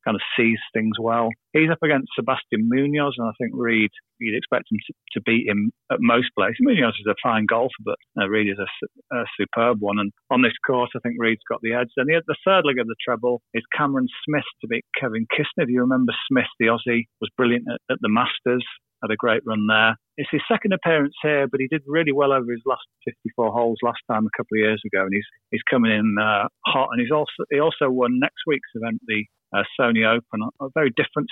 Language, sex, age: English, male, 40-59